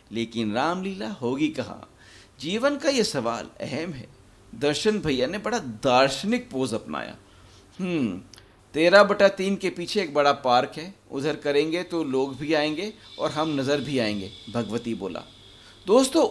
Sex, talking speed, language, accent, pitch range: male, 145 wpm, Hindi, native, 130-210 Hz